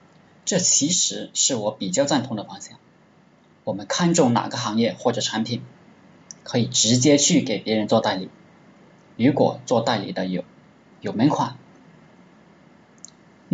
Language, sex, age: Chinese, male, 20-39